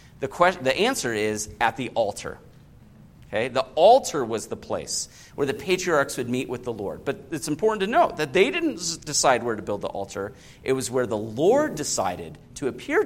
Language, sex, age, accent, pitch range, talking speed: English, male, 40-59, American, 125-195 Hz, 200 wpm